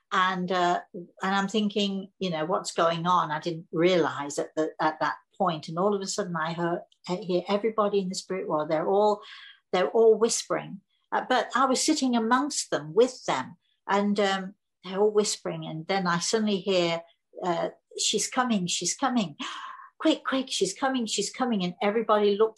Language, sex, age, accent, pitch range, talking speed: Italian, female, 60-79, British, 180-220 Hz, 185 wpm